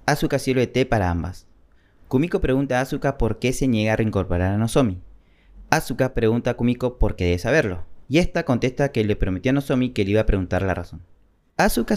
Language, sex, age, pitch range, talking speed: Spanish, male, 30-49, 90-135 Hz, 205 wpm